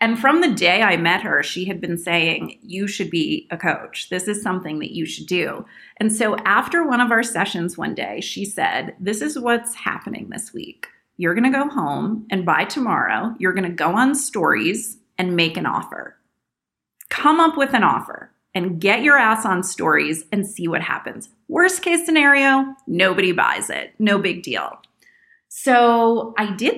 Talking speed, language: 190 wpm, English